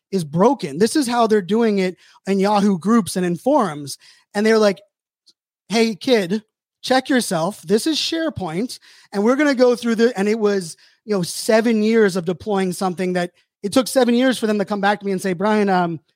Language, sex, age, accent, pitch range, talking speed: English, male, 20-39, American, 185-220 Hz, 210 wpm